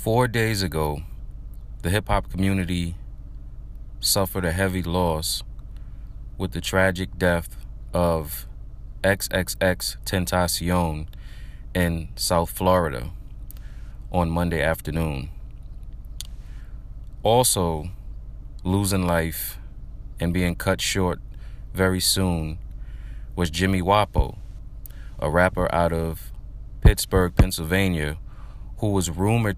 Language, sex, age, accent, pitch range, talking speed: English, male, 30-49, American, 80-100 Hz, 90 wpm